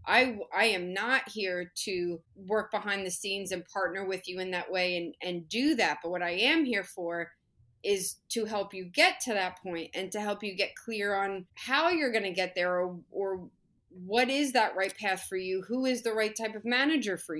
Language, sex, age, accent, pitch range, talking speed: English, female, 30-49, American, 185-225 Hz, 225 wpm